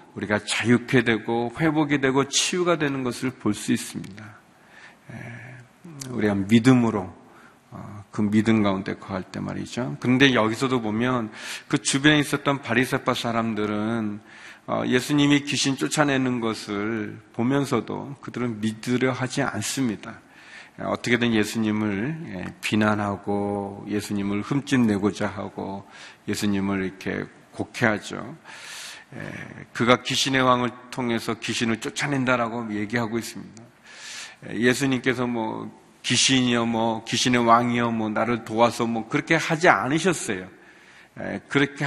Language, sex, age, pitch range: Korean, male, 40-59, 105-130 Hz